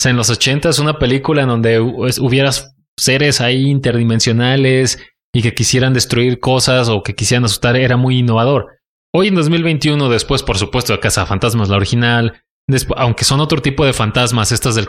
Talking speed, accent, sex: 195 wpm, Mexican, male